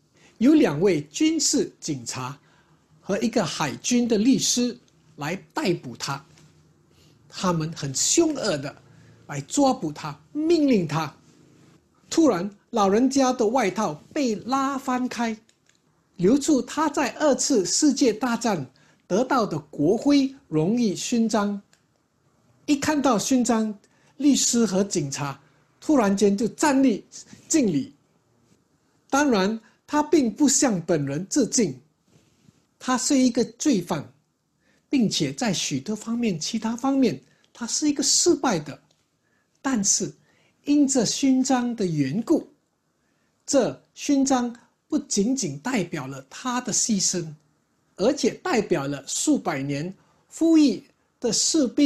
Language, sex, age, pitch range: English, male, 50-69, 170-270 Hz